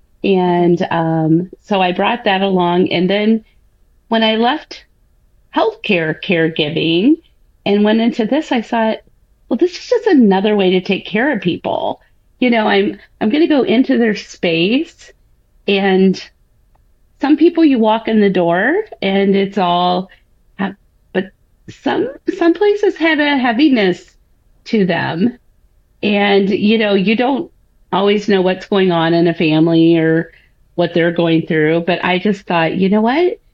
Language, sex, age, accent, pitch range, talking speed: English, female, 40-59, American, 175-225 Hz, 155 wpm